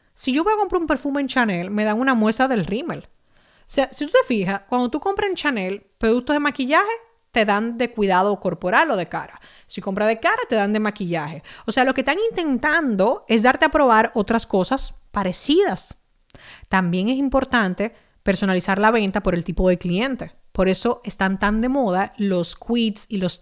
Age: 30-49